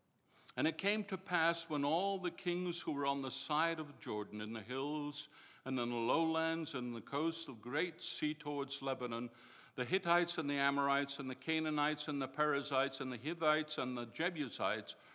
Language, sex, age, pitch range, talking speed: English, male, 60-79, 125-160 Hz, 190 wpm